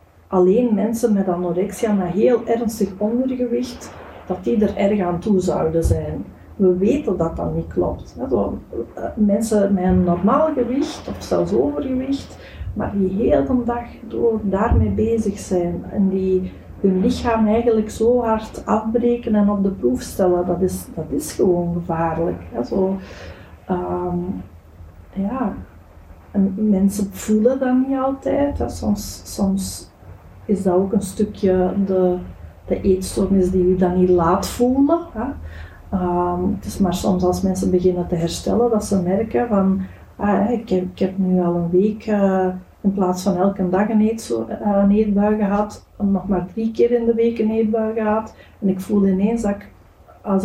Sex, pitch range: female, 175-220 Hz